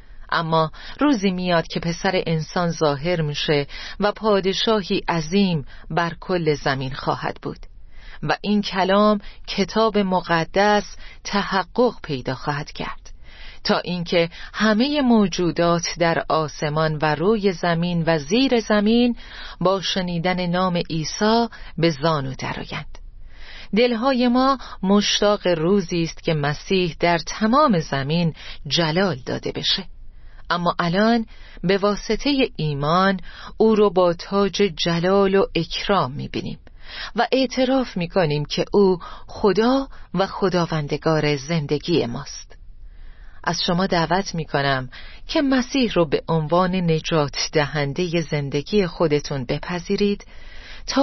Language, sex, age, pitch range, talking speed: Persian, female, 40-59, 160-205 Hz, 115 wpm